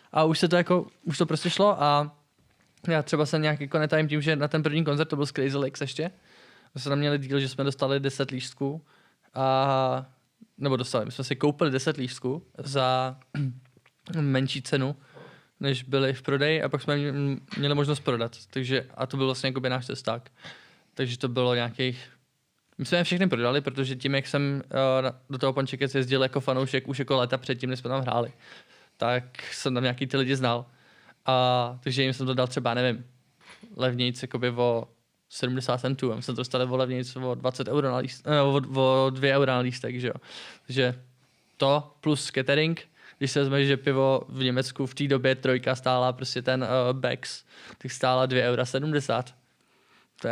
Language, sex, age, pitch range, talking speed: Czech, male, 20-39, 130-145 Hz, 180 wpm